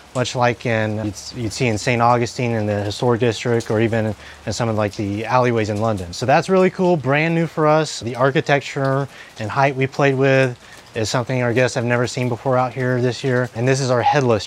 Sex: male